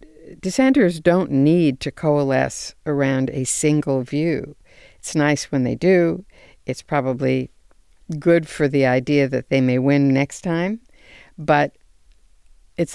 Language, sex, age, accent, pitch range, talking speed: English, female, 60-79, American, 135-170 Hz, 130 wpm